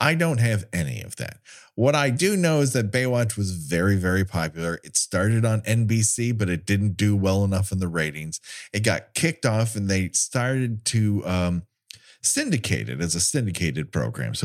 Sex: male